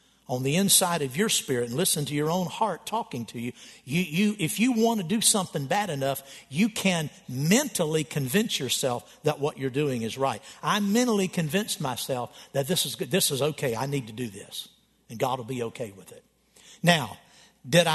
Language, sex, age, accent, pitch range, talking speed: English, male, 50-69, American, 125-180 Hz, 205 wpm